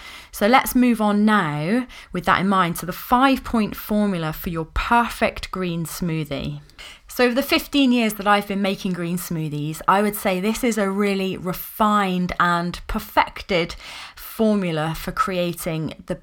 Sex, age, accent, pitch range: female, 20-39, British, 175-235 Hz